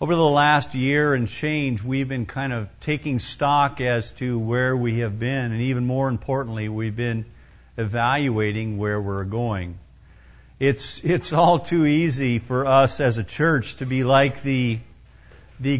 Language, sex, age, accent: English, male, 50-69, American